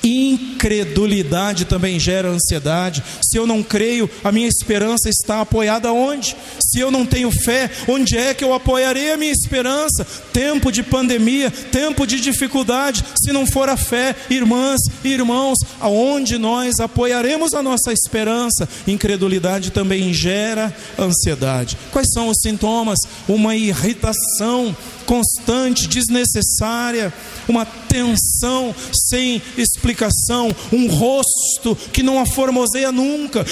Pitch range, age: 215-255 Hz, 40-59